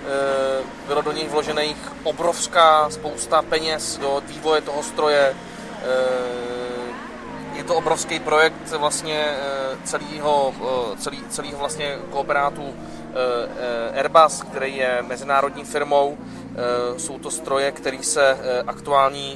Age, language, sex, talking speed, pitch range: 20-39, Czech, male, 100 wpm, 130-150 Hz